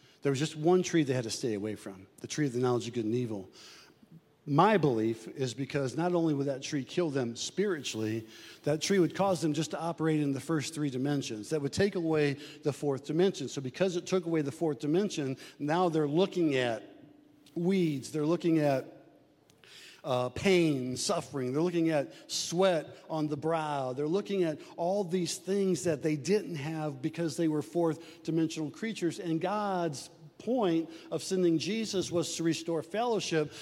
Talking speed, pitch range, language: 185 wpm, 155-195 Hz, English